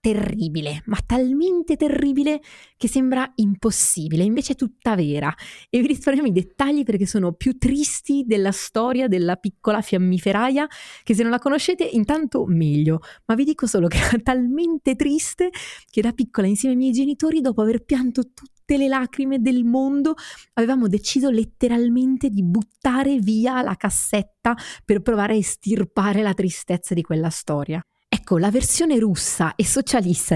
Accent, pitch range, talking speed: native, 185-255 Hz, 155 wpm